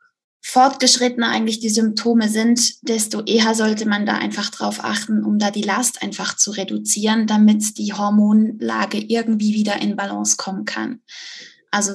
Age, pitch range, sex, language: 20-39, 210-240 Hz, female, German